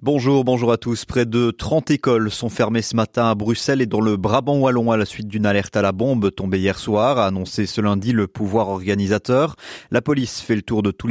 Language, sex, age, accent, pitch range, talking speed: French, male, 30-49, French, 100-125 Hz, 240 wpm